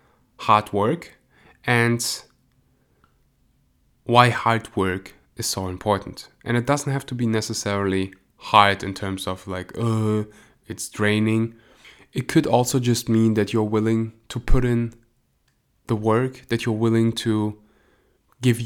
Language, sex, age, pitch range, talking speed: English, male, 20-39, 100-115 Hz, 135 wpm